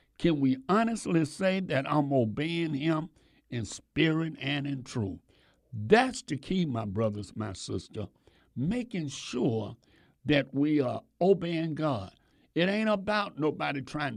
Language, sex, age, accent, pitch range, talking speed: English, male, 60-79, American, 115-160 Hz, 135 wpm